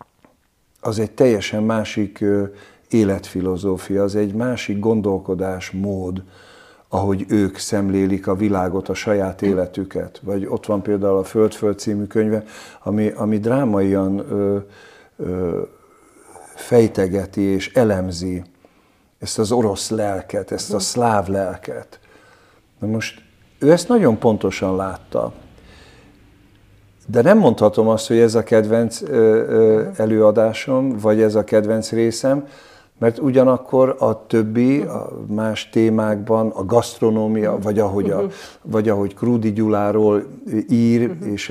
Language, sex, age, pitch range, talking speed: Hungarian, male, 50-69, 100-115 Hz, 110 wpm